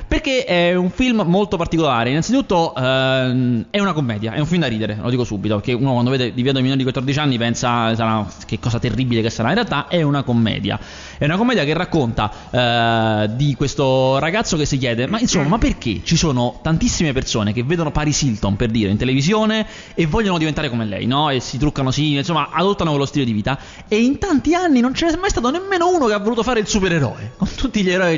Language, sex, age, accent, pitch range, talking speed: Italian, male, 20-39, native, 120-185 Hz, 225 wpm